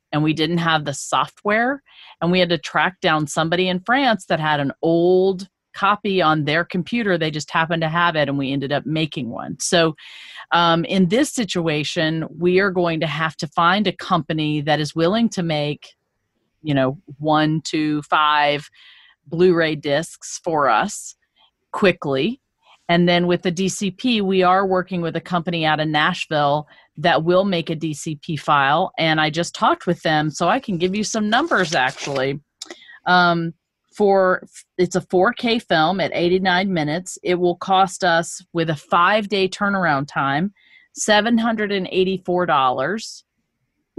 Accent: American